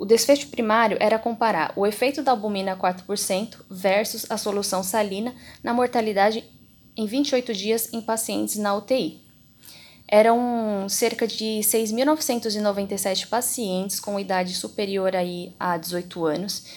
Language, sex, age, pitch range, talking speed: Portuguese, female, 10-29, 195-245 Hz, 120 wpm